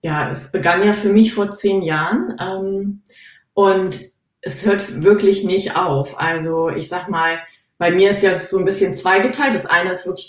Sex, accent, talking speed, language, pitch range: female, German, 185 wpm, German, 175-200 Hz